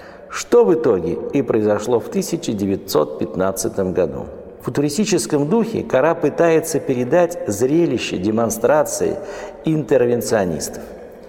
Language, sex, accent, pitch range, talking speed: Russian, male, native, 130-175 Hz, 90 wpm